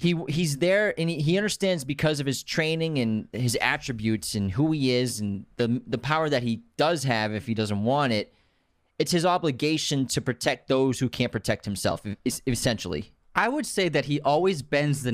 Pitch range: 110-140 Hz